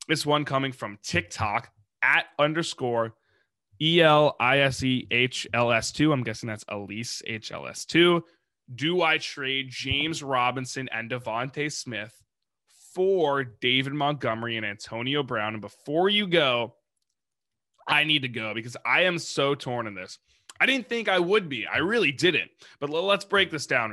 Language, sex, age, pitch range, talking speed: English, male, 20-39, 115-155 Hz, 140 wpm